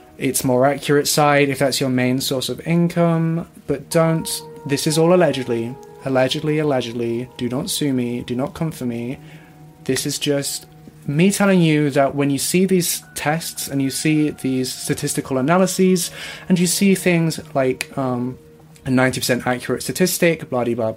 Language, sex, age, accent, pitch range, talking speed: English, male, 30-49, British, 130-165 Hz, 165 wpm